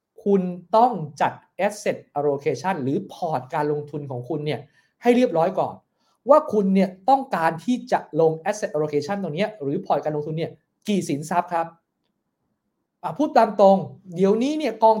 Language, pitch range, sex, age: English, 160-220 Hz, male, 20-39